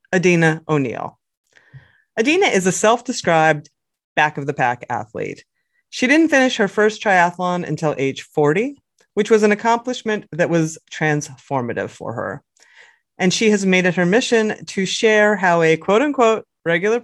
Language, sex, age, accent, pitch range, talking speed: English, female, 30-49, American, 155-215 Hz, 155 wpm